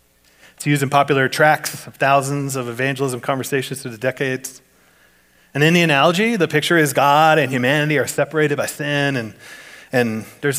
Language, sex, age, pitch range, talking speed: English, male, 30-49, 130-160 Hz, 170 wpm